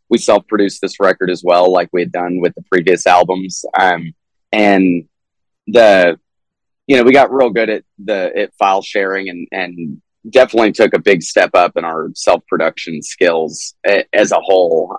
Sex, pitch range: male, 90-110 Hz